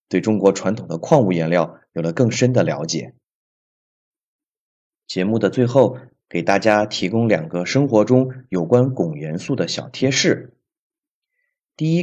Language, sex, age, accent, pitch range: Chinese, male, 30-49, native, 95-135 Hz